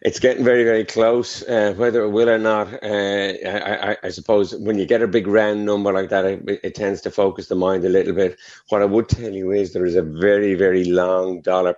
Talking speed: 245 wpm